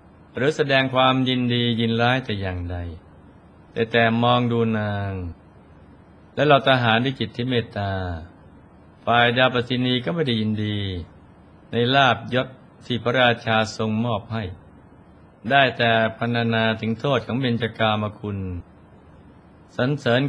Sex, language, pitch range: male, Thai, 95-125 Hz